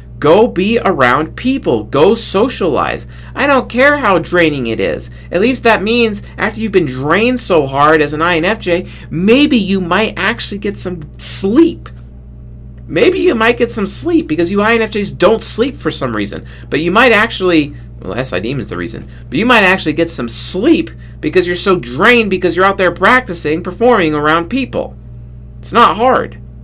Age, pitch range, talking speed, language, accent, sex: 40-59, 100-160 Hz, 175 wpm, English, American, male